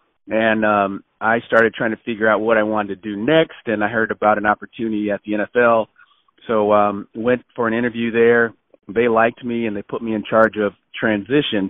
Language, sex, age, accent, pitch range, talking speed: English, male, 40-59, American, 105-115 Hz, 210 wpm